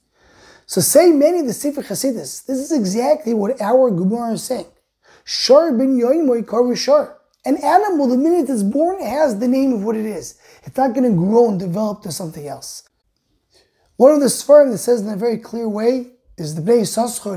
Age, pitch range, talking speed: 20-39, 205-260 Hz, 185 wpm